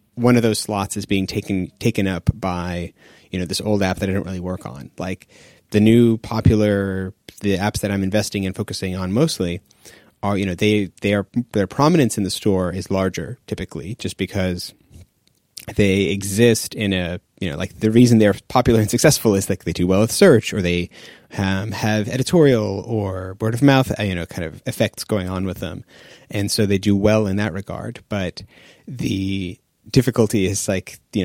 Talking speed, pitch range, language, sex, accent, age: 200 wpm, 95-120 Hz, English, male, American, 30-49